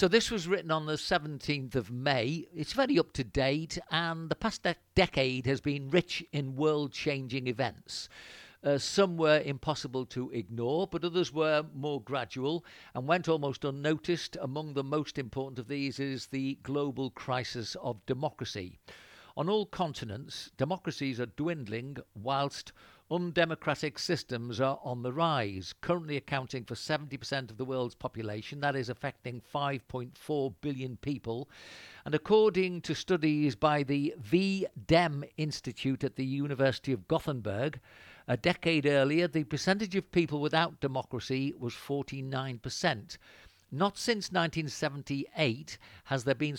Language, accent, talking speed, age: English, British, 140 wpm, 50-69